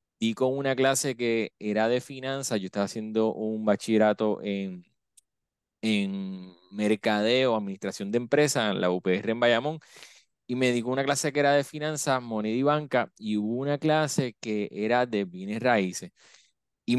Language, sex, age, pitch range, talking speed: Spanish, male, 20-39, 110-130 Hz, 165 wpm